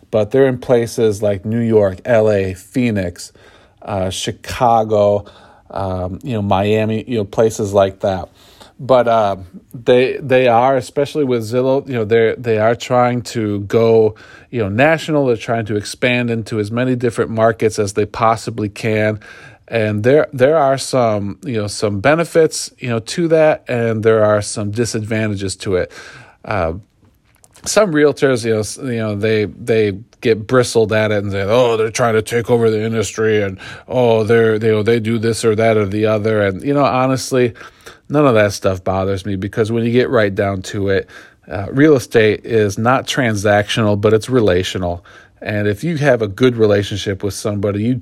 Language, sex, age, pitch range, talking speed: English, male, 40-59, 105-120 Hz, 180 wpm